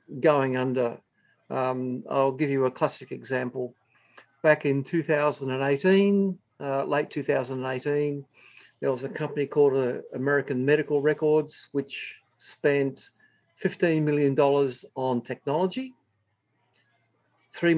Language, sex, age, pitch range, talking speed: English, male, 50-69, 130-155 Hz, 105 wpm